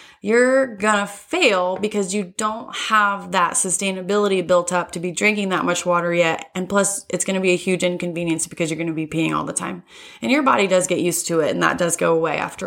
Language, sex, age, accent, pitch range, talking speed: English, female, 20-39, American, 180-215 Hz, 240 wpm